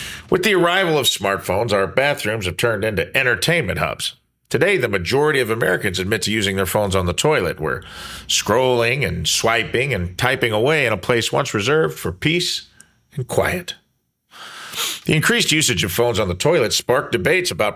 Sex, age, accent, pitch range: male, 40-59, American, 100-145 Hz